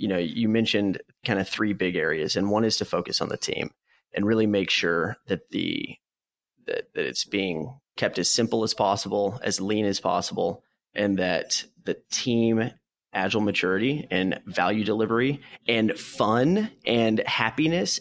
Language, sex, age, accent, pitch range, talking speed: English, male, 30-49, American, 105-145 Hz, 165 wpm